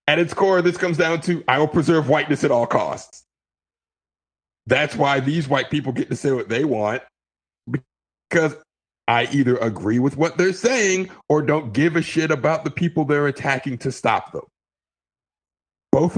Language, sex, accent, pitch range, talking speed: English, male, American, 125-160 Hz, 175 wpm